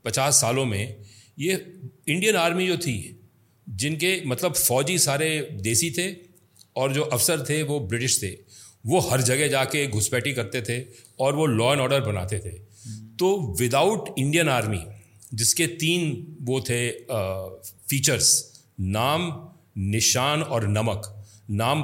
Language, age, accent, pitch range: Hindi, 40-59, native, 110-155 Hz